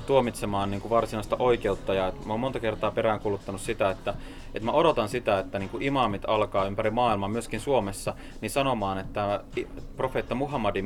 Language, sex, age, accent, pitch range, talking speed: Finnish, male, 30-49, native, 95-120 Hz, 155 wpm